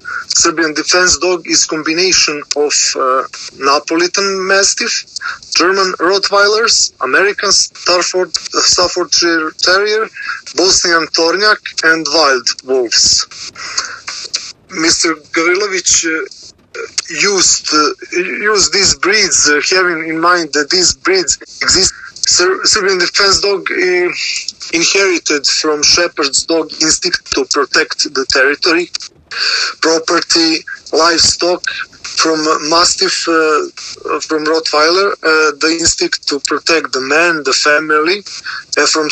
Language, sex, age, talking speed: English, male, 20-39, 105 wpm